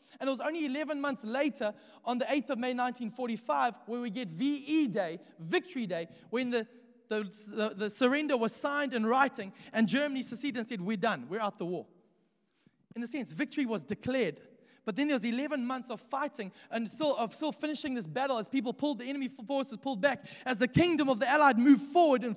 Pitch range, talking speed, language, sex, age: 210-260 Hz, 210 wpm, English, male, 20-39